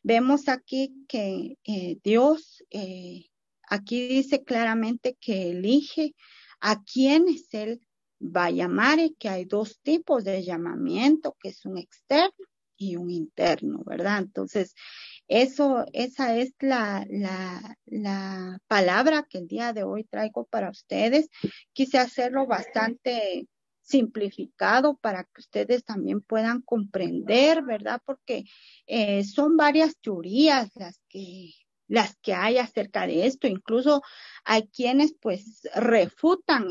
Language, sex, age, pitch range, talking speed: Spanish, female, 40-59, 205-280 Hz, 125 wpm